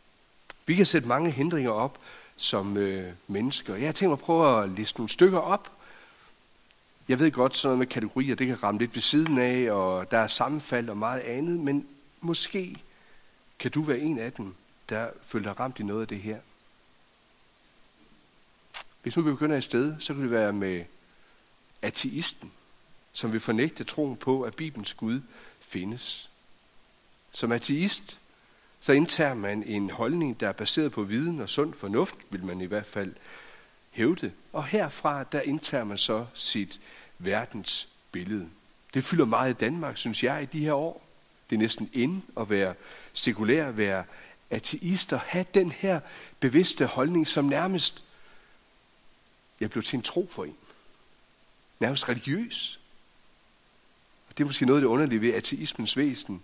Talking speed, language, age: 165 wpm, Danish, 60-79